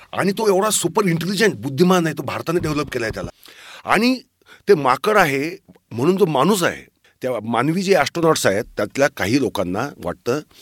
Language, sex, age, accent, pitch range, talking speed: Marathi, male, 40-59, native, 130-180 Hz, 170 wpm